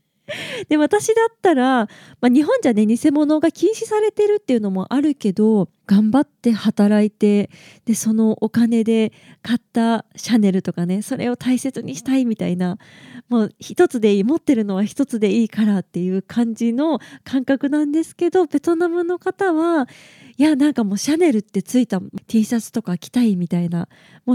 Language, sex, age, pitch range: Japanese, female, 20-39, 200-275 Hz